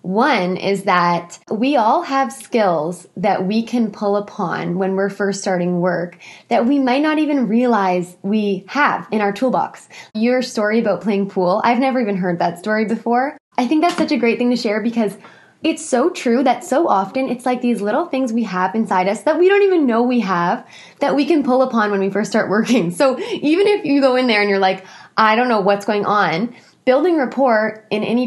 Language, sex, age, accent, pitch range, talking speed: English, female, 20-39, American, 185-245 Hz, 215 wpm